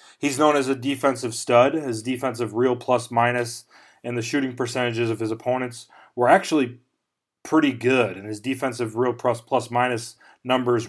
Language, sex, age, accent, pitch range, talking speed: English, male, 30-49, American, 115-135 Hz, 150 wpm